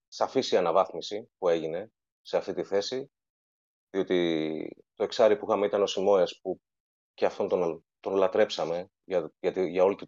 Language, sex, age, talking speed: Greek, male, 30-49, 160 wpm